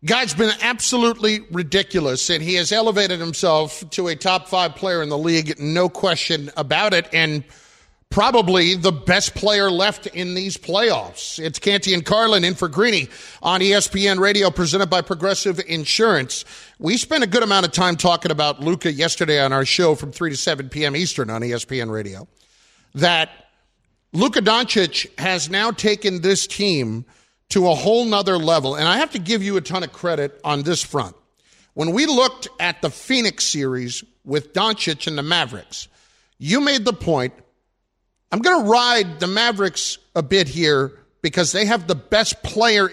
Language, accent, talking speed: English, American, 175 wpm